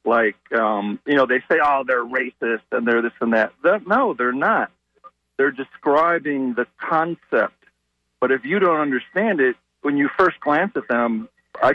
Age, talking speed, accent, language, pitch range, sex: 50-69, 180 wpm, American, English, 115-150 Hz, male